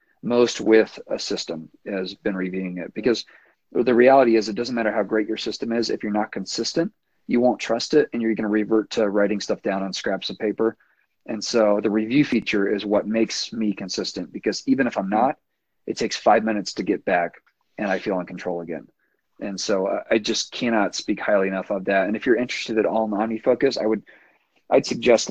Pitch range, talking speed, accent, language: 95-110 Hz, 215 wpm, American, English